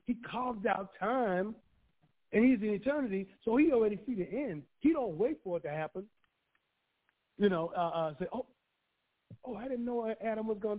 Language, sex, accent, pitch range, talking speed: English, male, American, 180-240 Hz, 190 wpm